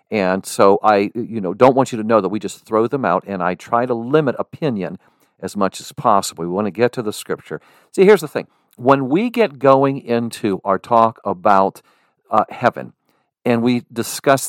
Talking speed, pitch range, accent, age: 205 wpm, 105-135 Hz, American, 50-69